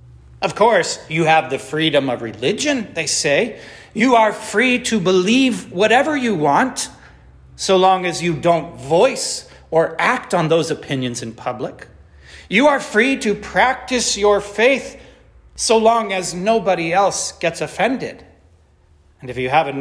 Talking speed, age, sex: 150 wpm, 40-59, male